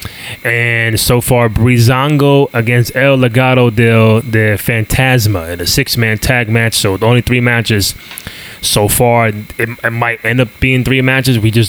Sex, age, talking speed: male, 20-39, 165 wpm